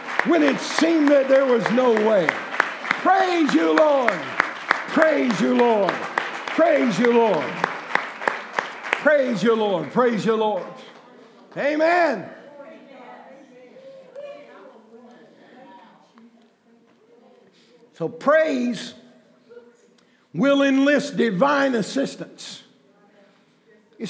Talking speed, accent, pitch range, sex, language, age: 75 wpm, American, 230-280 Hz, male, English, 60-79